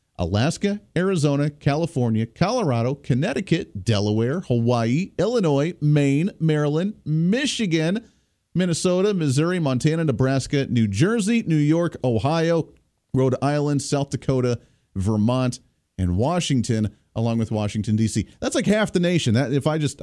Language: English